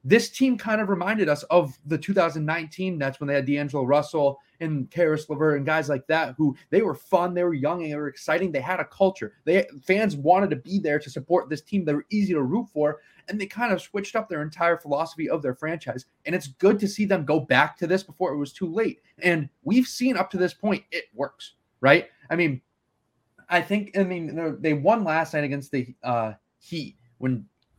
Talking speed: 225 wpm